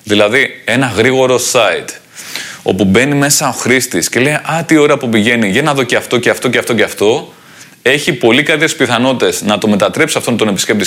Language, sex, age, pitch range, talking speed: Greek, male, 20-39, 115-160 Hz, 205 wpm